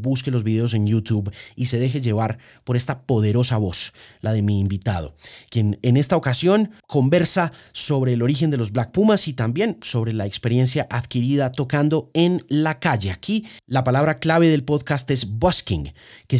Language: Spanish